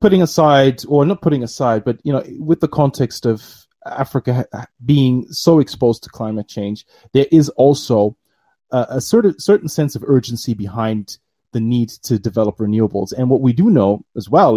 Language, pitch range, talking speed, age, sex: English, 115-145 Hz, 175 wpm, 30-49, male